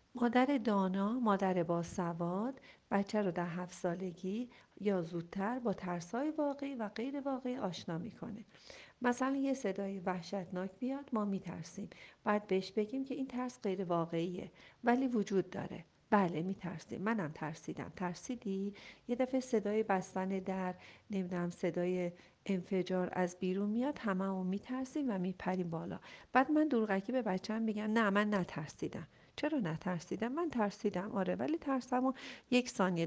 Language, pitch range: Persian, 180-240 Hz